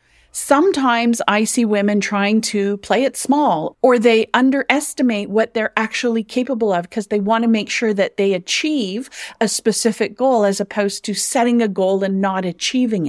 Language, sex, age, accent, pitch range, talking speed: English, female, 40-59, American, 200-250 Hz, 175 wpm